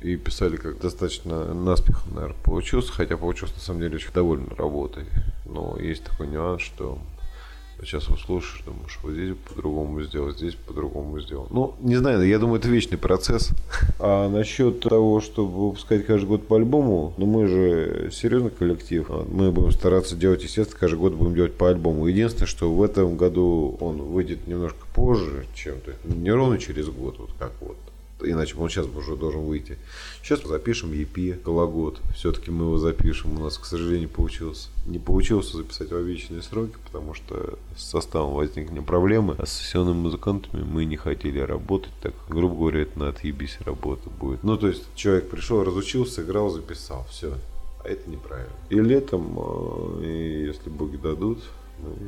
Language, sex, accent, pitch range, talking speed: Russian, male, native, 75-95 Hz, 170 wpm